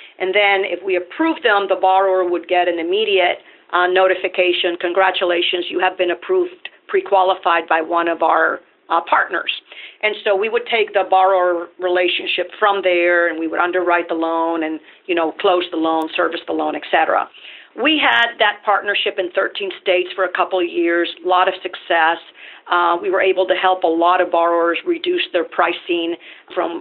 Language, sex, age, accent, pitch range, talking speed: English, female, 40-59, American, 175-205 Hz, 190 wpm